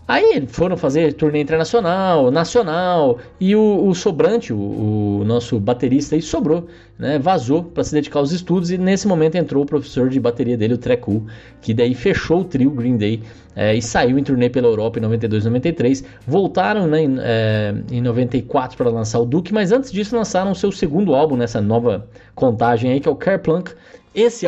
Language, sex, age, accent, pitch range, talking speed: Portuguese, male, 20-39, Brazilian, 120-180 Hz, 195 wpm